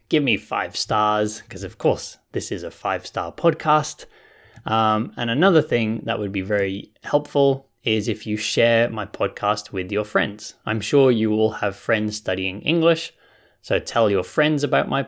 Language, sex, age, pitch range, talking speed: English, male, 20-39, 105-135 Hz, 175 wpm